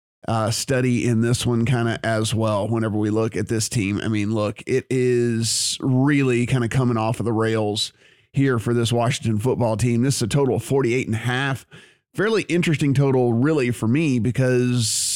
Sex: male